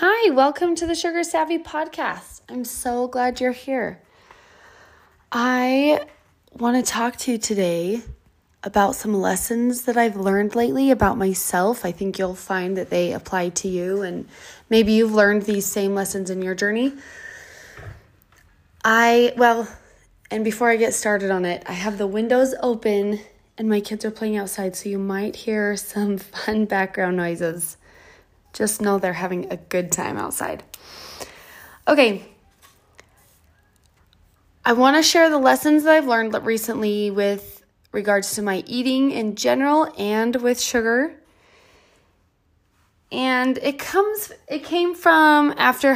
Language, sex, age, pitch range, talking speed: English, female, 20-39, 200-265 Hz, 145 wpm